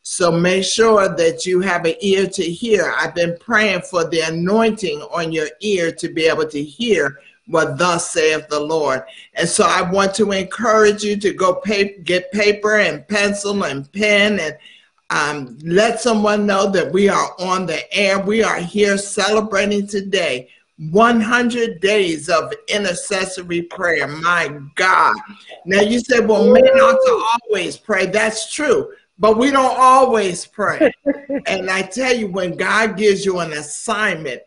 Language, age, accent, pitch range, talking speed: English, 50-69, American, 170-215 Hz, 160 wpm